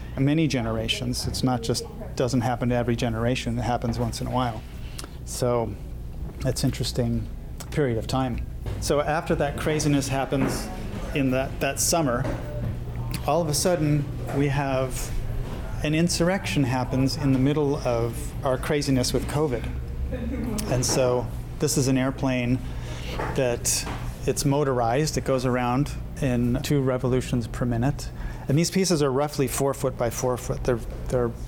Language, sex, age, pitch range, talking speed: English, male, 30-49, 120-140 Hz, 145 wpm